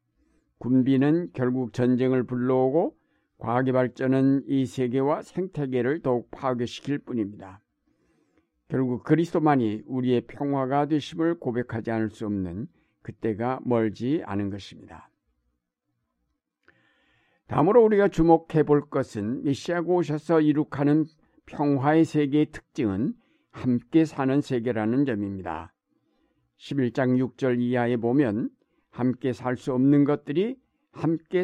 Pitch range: 120-150 Hz